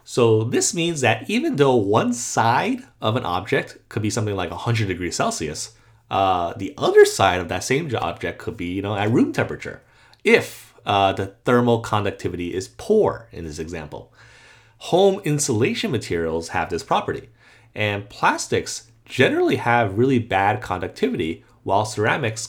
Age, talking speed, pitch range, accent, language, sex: 30-49, 155 wpm, 100-125 Hz, American, English, male